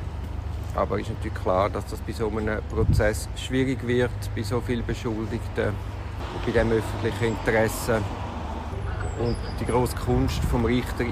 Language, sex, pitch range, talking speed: German, male, 100-120 Hz, 150 wpm